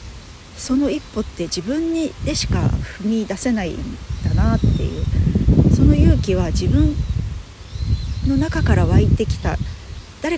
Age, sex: 40-59, female